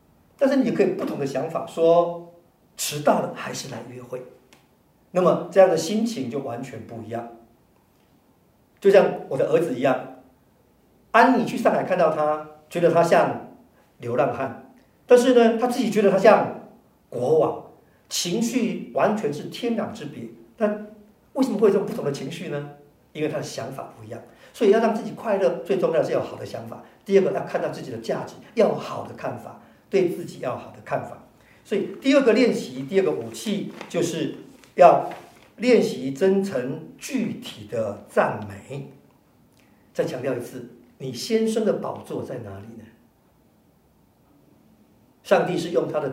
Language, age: Chinese, 50-69